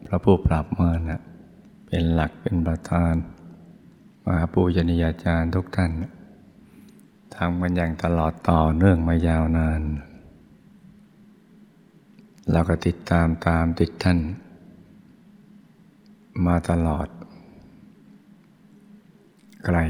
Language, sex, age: Thai, male, 60-79